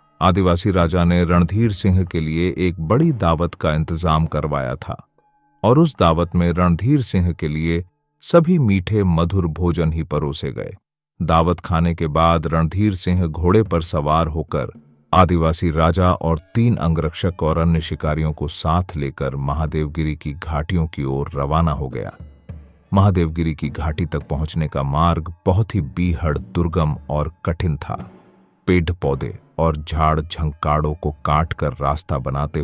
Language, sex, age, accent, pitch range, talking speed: Hindi, male, 40-59, native, 80-90 Hz, 150 wpm